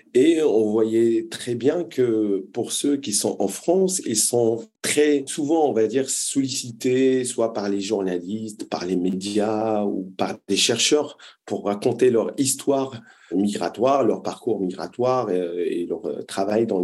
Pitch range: 105-140 Hz